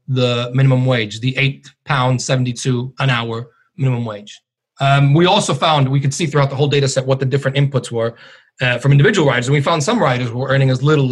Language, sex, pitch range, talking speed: English, male, 135-175 Hz, 210 wpm